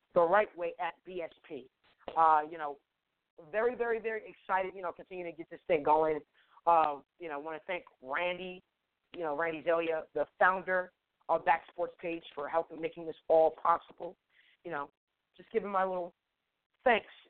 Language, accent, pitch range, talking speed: English, American, 150-175 Hz, 175 wpm